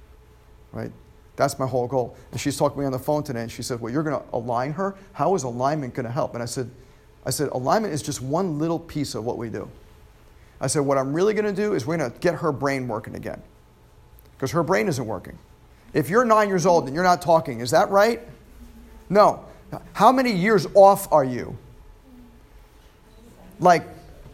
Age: 50-69